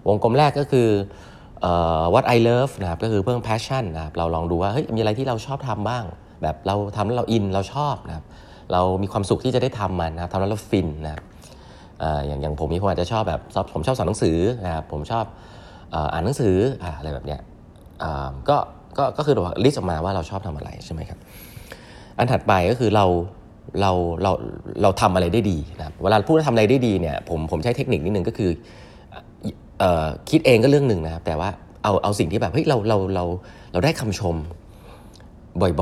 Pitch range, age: 85-115 Hz, 20-39